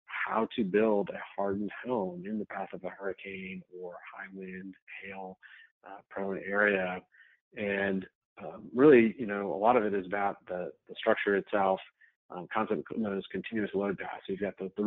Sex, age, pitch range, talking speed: male, 40-59, 95-105 Hz, 190 wpm